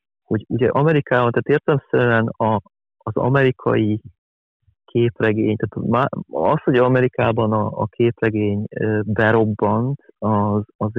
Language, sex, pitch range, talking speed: Hungarian, male, 110-120 Hz, 100 wpm